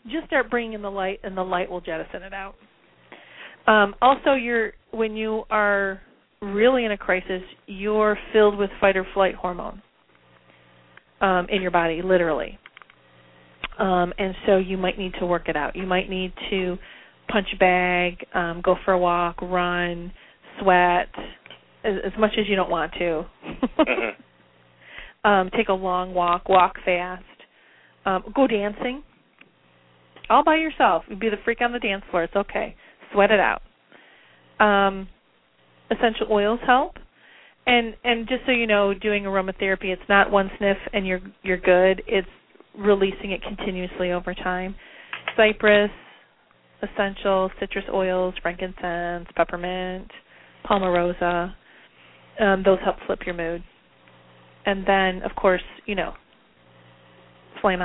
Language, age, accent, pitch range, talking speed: English, 30-49, American, 175-210 Hz, 140 wpm